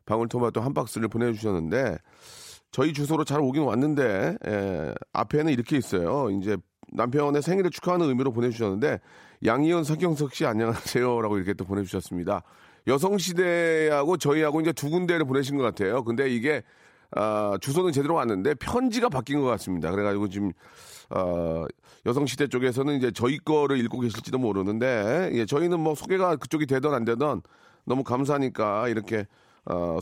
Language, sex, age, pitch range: Korean, male, 40-59, 110-150 Hz